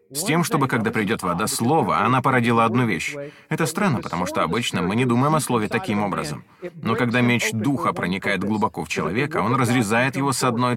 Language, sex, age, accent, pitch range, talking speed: Russian, male, 30-49, native, 120-165 Hz, 200 wpm